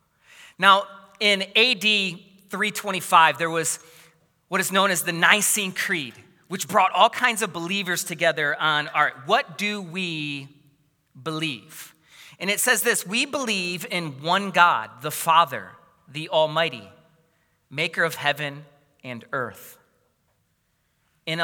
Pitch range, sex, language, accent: 145-185 Hz, male, English, American